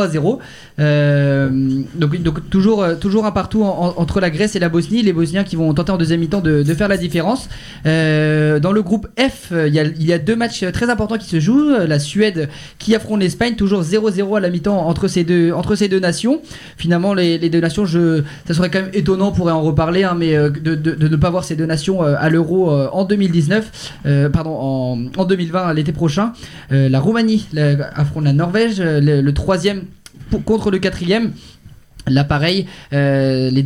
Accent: French